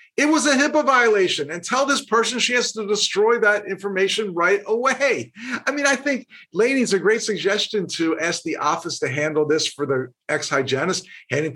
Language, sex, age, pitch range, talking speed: English, male, 50-69, 145-240 Hz, 185 wpm